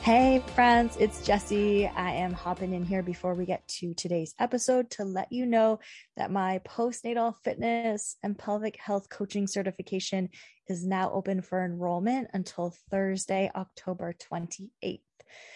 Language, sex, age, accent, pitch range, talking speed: English, female, 20-39, American, 185-215 Hz, 145 wpm